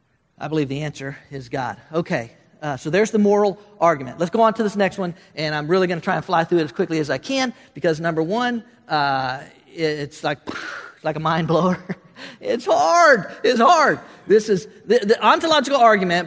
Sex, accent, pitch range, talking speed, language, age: male, American, 160-210 Hz, 205 wpm, English, 40-59